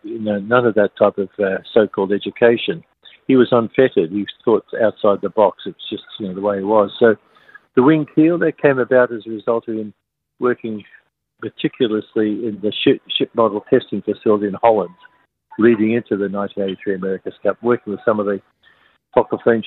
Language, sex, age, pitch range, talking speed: English, male, 50-69, 105-120 Hz, 175 wpm